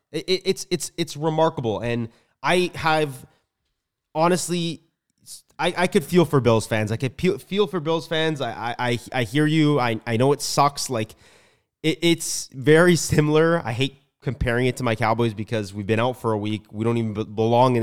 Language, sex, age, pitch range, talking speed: English, male, 20-39, 115-155 Hz, 185 wpm